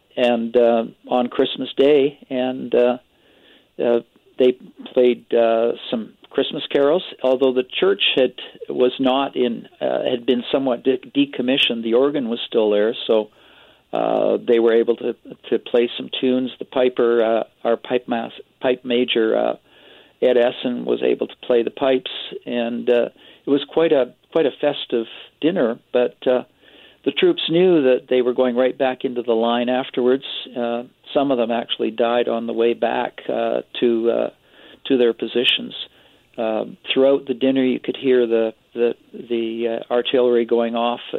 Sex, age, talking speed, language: male, 50-69, 165 wpm, English